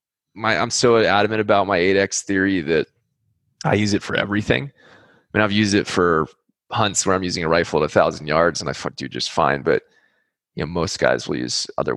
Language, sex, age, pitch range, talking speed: English, male, 20-39, 90-115 Hz, 210 wpm